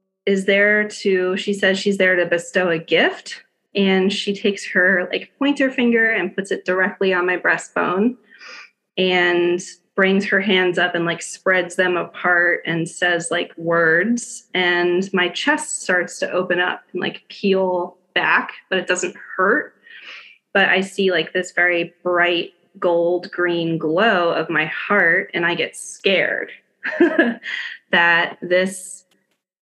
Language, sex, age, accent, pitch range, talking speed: English, female, 20-39, American, 175-200 Hz, 145 wpm